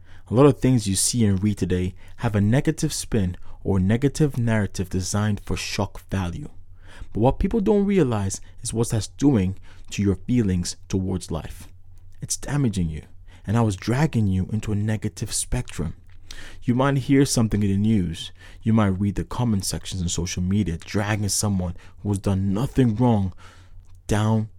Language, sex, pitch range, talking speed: English, male, 90-125 Hz, 175 wpm